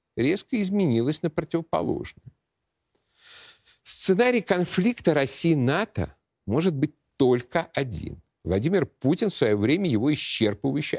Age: 50-69